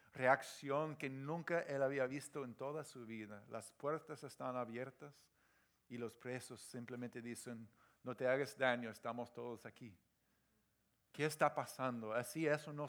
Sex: male